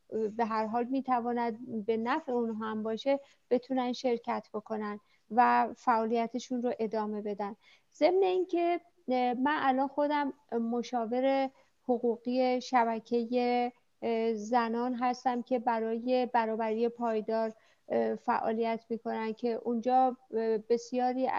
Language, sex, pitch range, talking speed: Persian, female, 225-260 Hz, 100 wpm